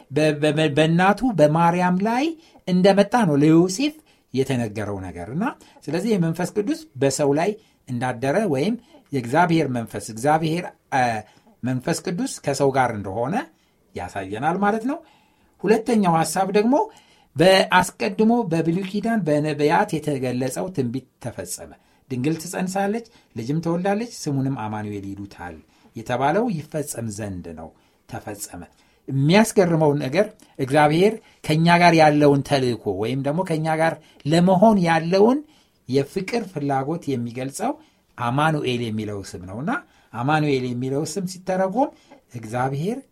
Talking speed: 105 wpm